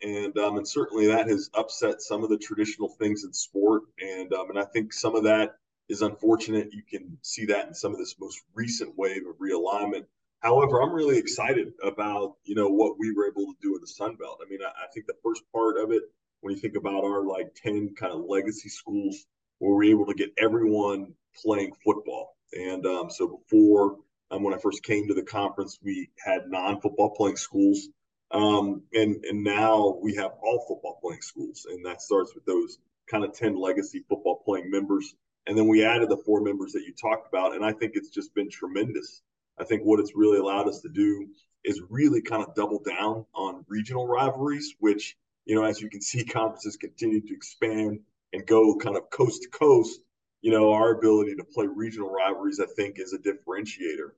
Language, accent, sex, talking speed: English, American, male, 205 wpm